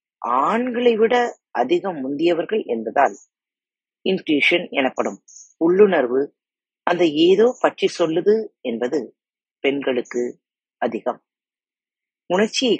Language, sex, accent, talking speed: Tamil, female, native, 80 wpm